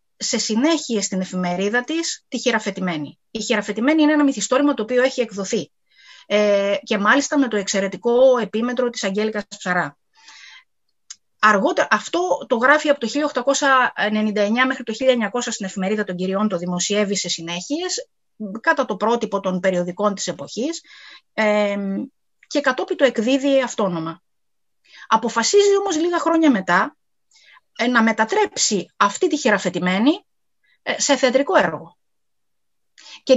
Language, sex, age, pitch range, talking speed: Greek, female, 30-49, 200-275 Hz, 130 wpm